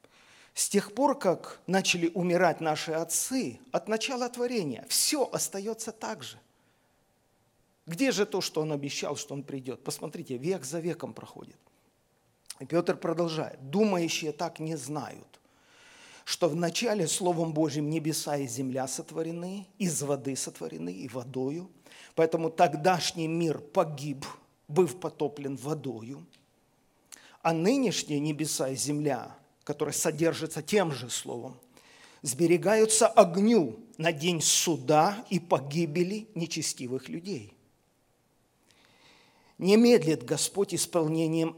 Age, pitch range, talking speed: 40-59, 150-195 Hz, 115 wpm